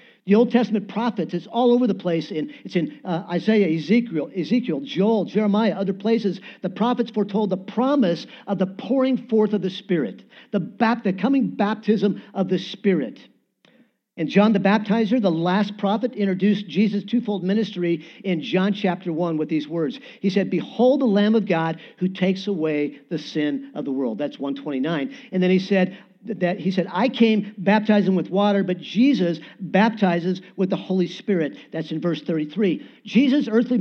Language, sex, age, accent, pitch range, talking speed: English, male, 50-69, American, 180-230 Hz, 170 wpm